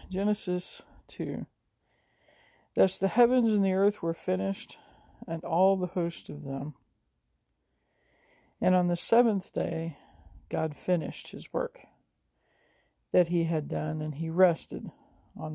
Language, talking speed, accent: English, 125 wpm, American